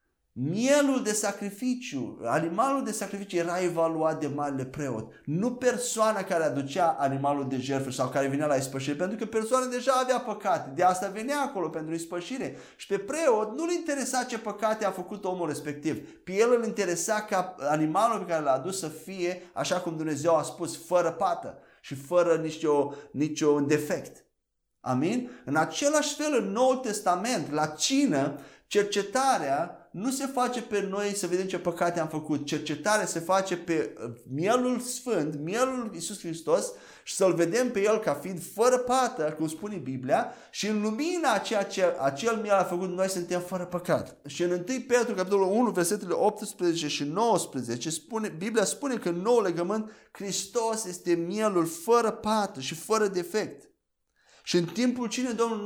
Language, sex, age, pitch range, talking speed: Romanian, male, 30-49, 160-230 Hz, 165 wpm